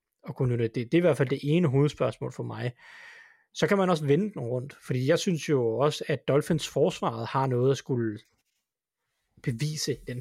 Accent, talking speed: native, 195 wpm